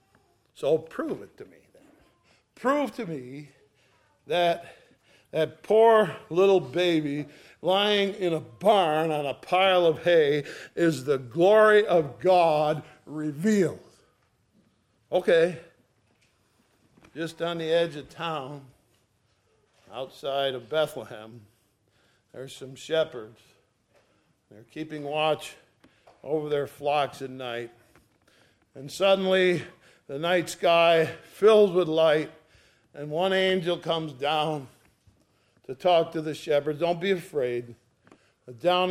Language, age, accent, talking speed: English, 60-79, American, 110 wpm